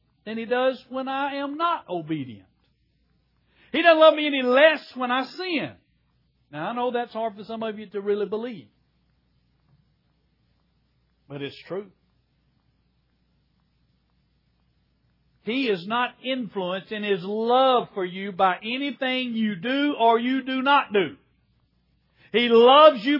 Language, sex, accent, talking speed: English, male, American, 135 wpm